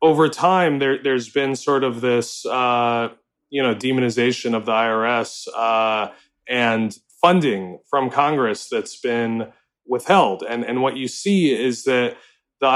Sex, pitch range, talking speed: male, 115-135 Hz, 145 wpm